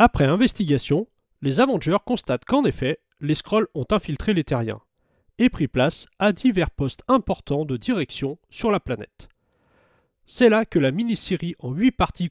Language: French